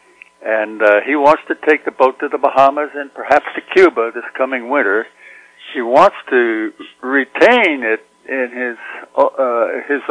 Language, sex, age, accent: English, male, 60-79, American